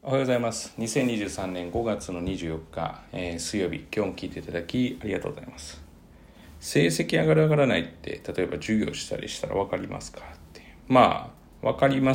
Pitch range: 80-125 Hz